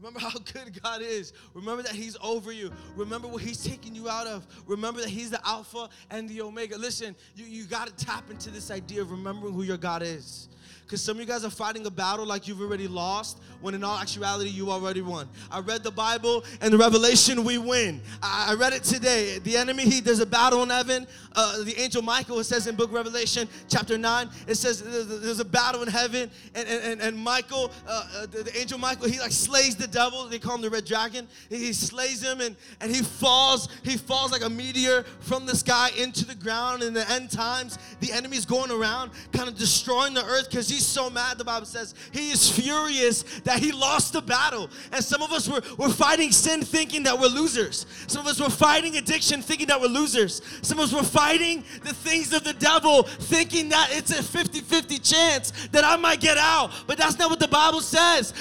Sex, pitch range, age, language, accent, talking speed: male, 220-265 Hz, 20-39, English, American, 225 wpm